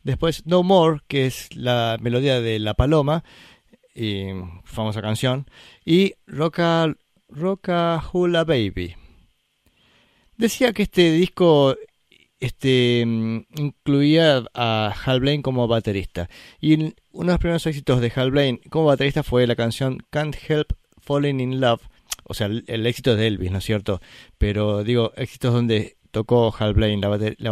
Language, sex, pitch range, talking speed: Spanish, male, 115-155 Hz, 140 wpm